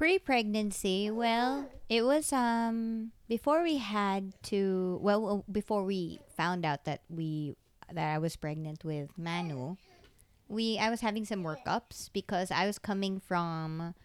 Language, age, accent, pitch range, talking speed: English, 20-39, Filipino, 165-210 Hz, 145 wpm